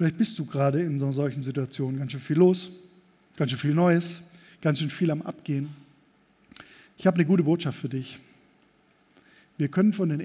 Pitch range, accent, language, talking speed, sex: 145-190 Hz, German, German, 195 wpm, male